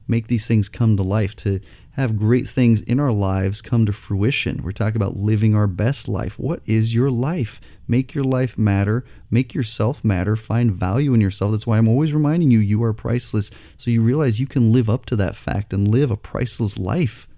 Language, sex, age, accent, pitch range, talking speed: English, male, 30-49, American, 105-125 Hz, 215 wpm